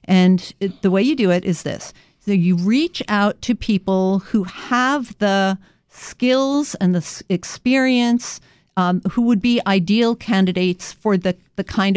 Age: 50-69